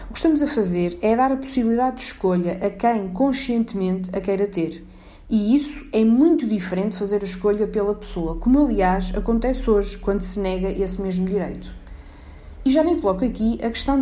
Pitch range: 190-240 Hz